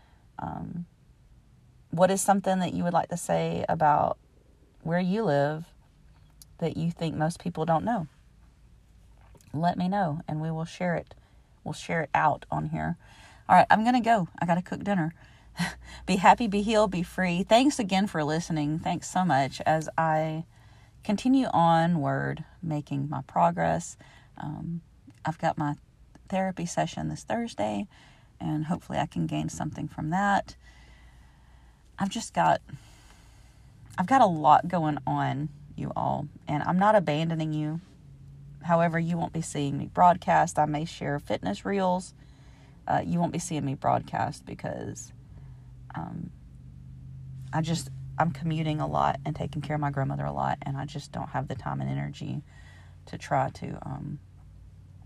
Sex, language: female, English